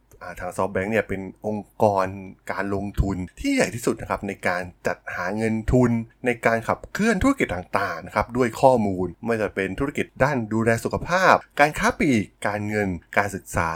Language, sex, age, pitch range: Thai, male, 20-39, 95-120 Hz